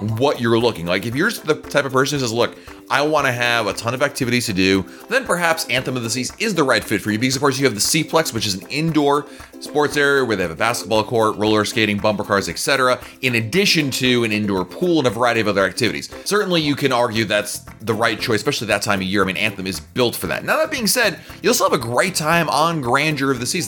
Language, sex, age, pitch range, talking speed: English, male, 30-49, 105-145 Hz, 270 wpm